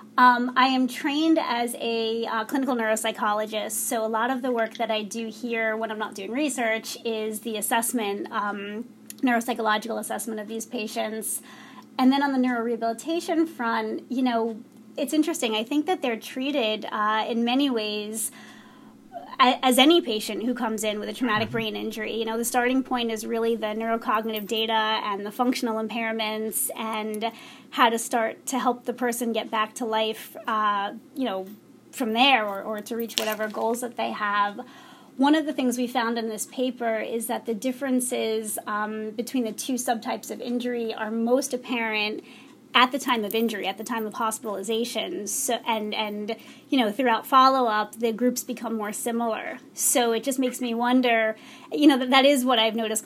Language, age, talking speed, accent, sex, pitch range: English, 30-49, 185 wpm, American, female, 220-255 Hz